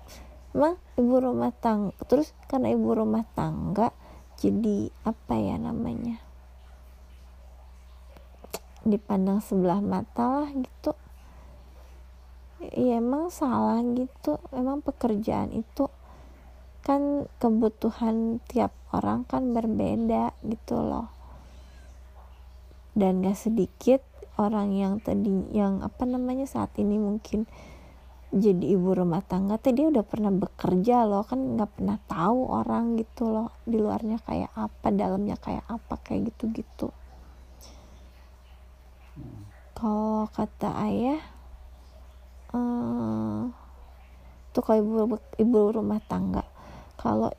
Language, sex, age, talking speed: Indonesian, female, 20-39, 105 wpm